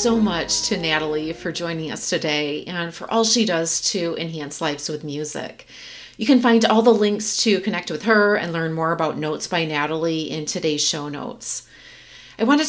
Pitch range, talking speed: 160-215 Hz, 195 wpm